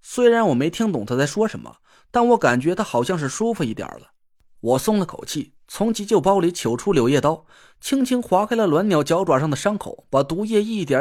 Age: 20-39